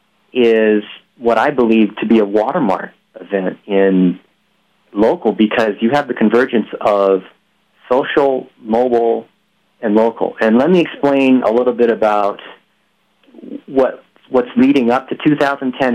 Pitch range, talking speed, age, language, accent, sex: 105-130 Hz, 130 wpm, 30-49, English, American, male